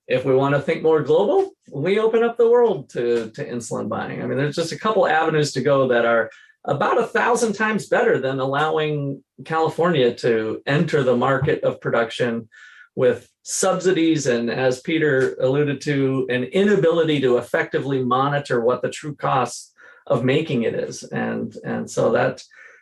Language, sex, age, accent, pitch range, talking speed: English, male, 30-49, American, 130-190 Hz, 170 wpm